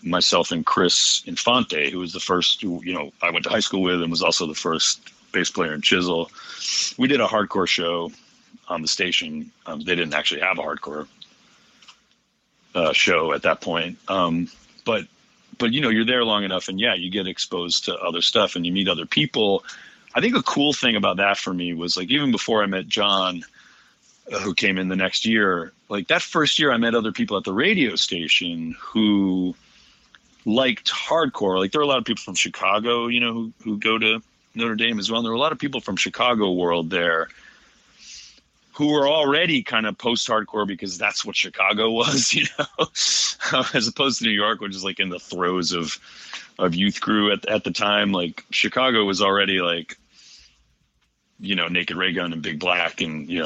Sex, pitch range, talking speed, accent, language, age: male, 90-115 Hz, 200 wpm, American, English, 40-59